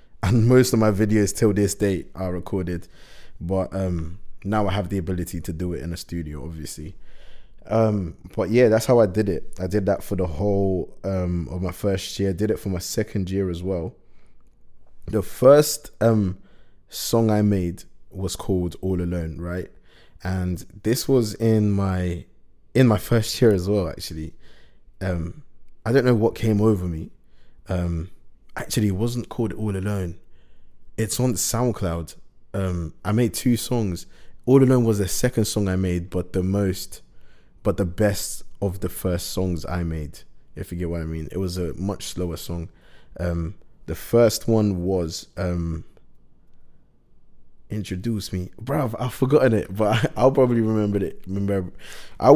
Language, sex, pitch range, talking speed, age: English, male, 90-110 Hz, 170 wpm, 20-39